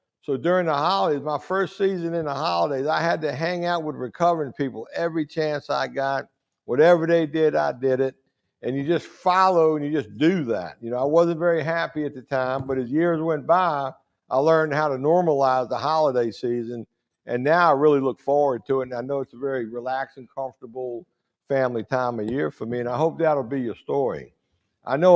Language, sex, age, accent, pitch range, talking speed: English, male, 60-79, American, 130-170 Hz, 215 wpm